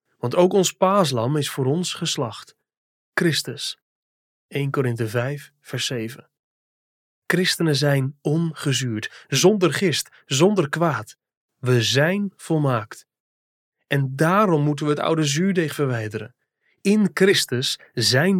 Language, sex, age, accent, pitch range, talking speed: Dutch, male, 30-49, Dutch, 130-175 Hz, 115 wpm